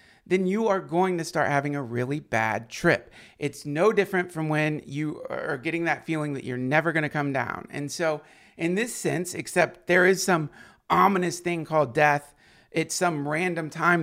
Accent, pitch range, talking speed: American, 145-180 Hz, 190 wpm